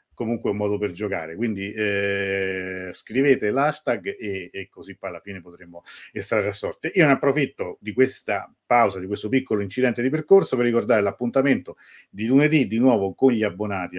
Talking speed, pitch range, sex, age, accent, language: 175 wpm, 100-120 Hz, male, 50-69, native, Italian